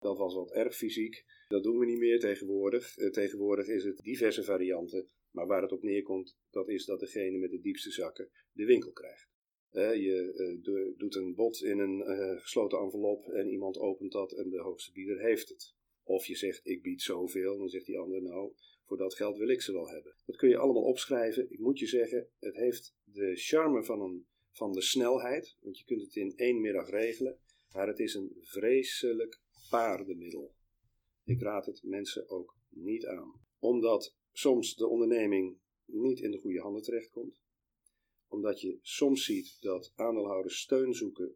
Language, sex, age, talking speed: Dutch, male, 40-59, 185 wpm